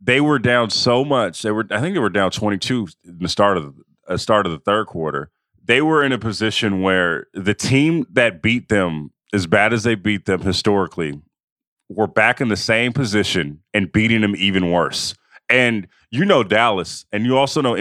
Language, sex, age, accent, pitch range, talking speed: English, male, 30-49, American, 105-135 Hz, 205 wpm